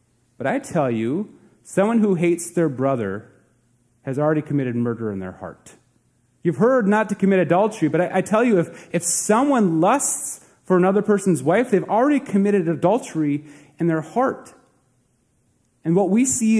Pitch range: 120-175 Hz